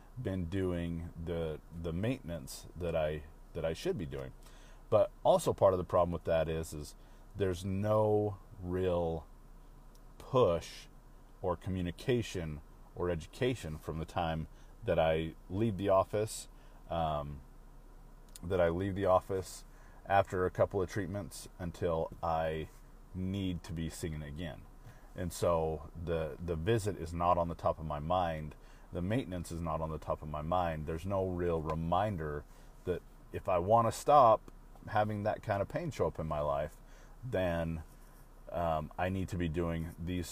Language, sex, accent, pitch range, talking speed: English, male, American, 80-95 Hz, 160 wpm